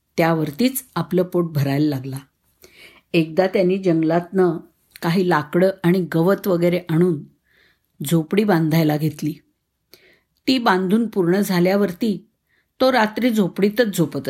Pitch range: 165-205 Hz